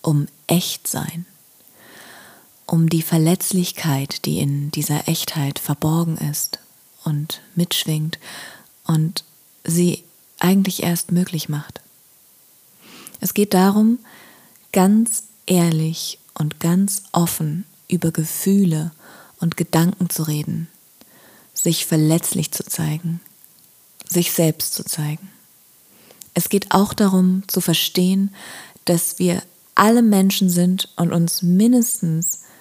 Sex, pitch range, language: female, 160-190 Hz, German